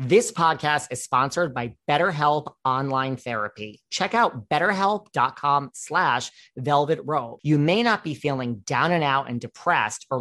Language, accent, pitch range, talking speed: English, American, 125-160 Hz, 145 wpm